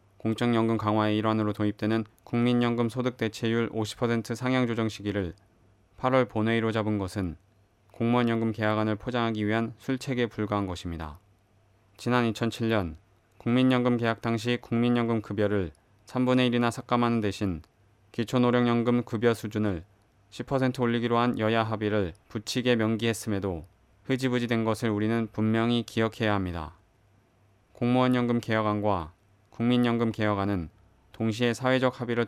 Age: 20-39